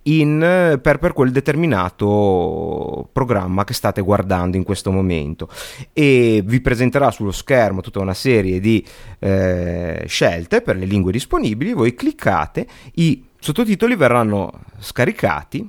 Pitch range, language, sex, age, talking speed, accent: 100-130 Hz, Italian, male, 30-49, 125 wpm, native